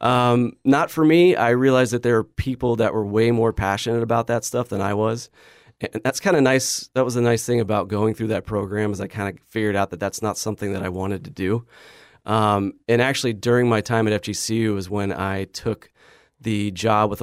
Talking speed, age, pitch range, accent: 230 wpm, 30-49, 95-115 Hz, American